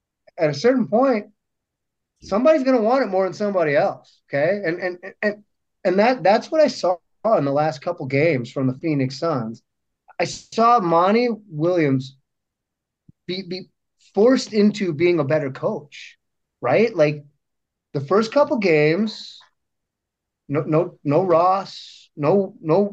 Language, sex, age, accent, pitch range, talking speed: English, male, 30-49, American, 150-210 Hz, 145 wpm